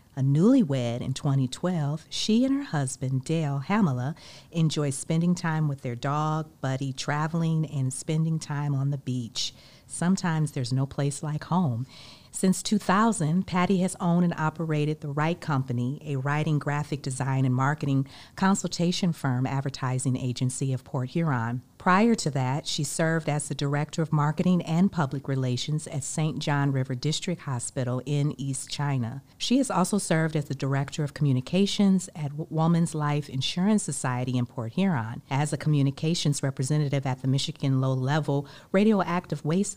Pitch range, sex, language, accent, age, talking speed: 135-170 Hz, female, English, American, 40-59, 155 wpm